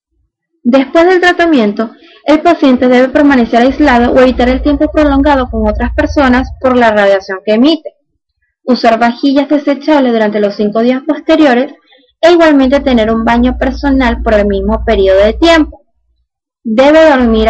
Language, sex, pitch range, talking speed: Spanish, female, 220-275 Hz, 145 wpm